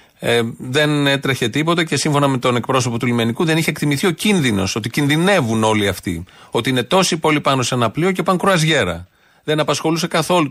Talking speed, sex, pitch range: 195 wpm, male, 115-155 Hz